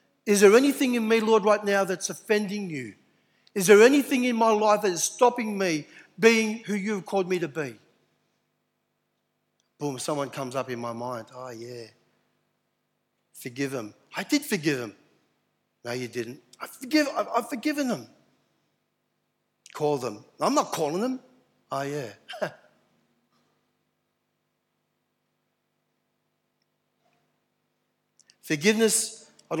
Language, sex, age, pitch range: English, male, 60-79, 130-205 Hz